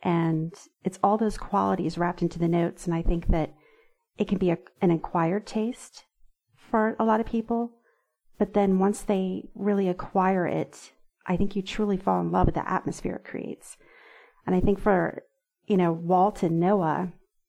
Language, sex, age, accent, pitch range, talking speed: English, female, 40-59, American, 170-200 Hz, 180 wpm